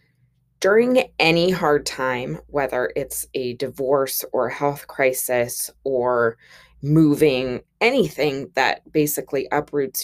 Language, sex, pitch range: English, female, 145-205 Hz